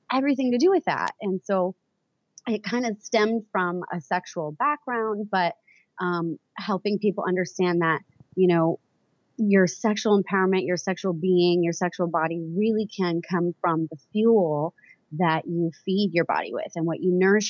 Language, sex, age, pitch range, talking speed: English, female, 30-49, 165-200 Hz, 165 wpm